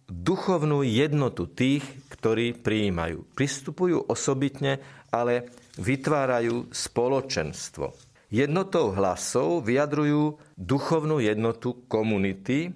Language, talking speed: Slovak, 75 wpm